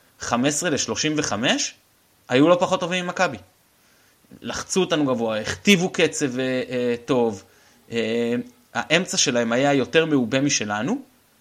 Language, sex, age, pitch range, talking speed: Hebrew, male, 20-39, 115-145 Hz, 110 wpm